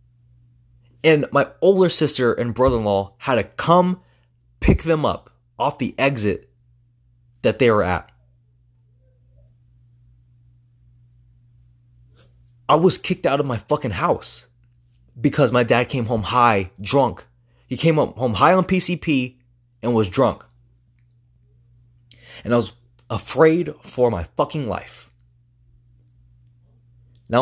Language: English